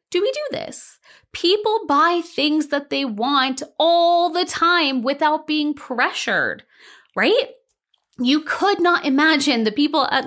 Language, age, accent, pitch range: English, 20-39, American, 225-315 Hz